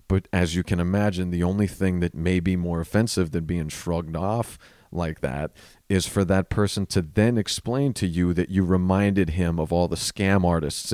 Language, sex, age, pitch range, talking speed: English, male, 40-59, 85-100 Hz, 205 wpm